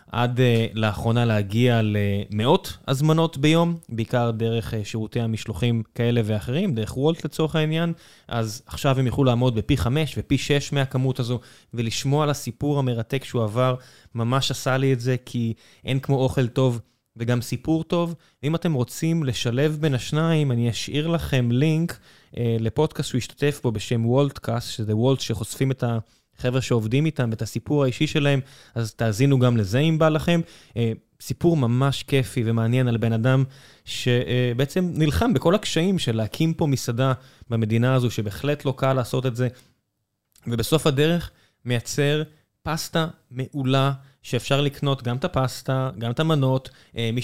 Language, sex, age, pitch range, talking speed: Hebrew, male, 20-39, 115-145 Hz, 150 wpm